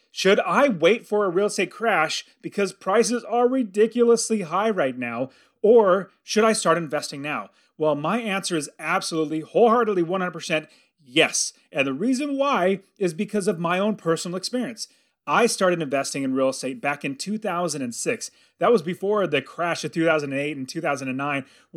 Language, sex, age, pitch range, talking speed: English, male, 30-49, 150-220 Hz, 160 wpm